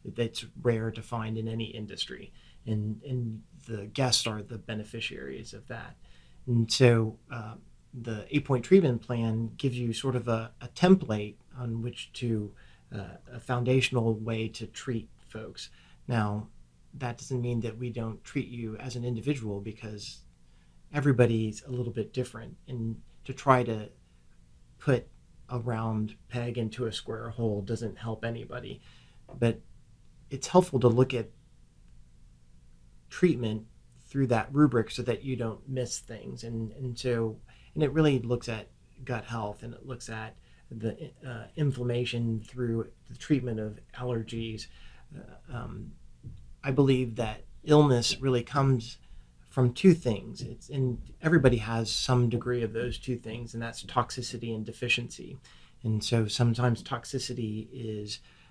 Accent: American